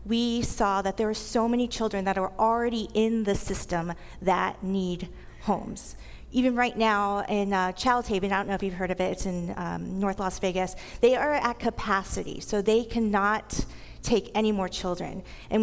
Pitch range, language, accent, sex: 195-235 Hz, English, American, female